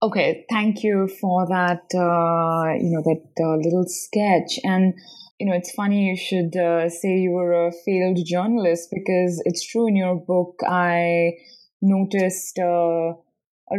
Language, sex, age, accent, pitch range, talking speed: English, female, 20-39, Indian, 155-195 Hz, 155 wpm